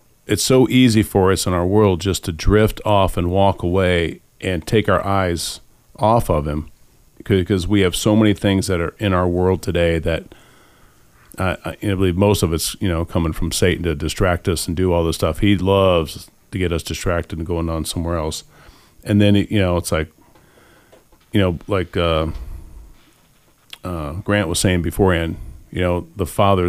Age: 40-59